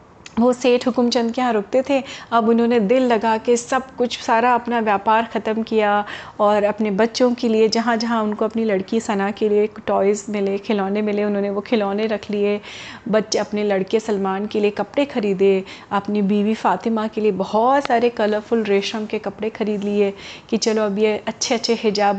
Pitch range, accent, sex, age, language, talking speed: 210-250 Hz, native, female, 30-49, Hindi, 185 wpm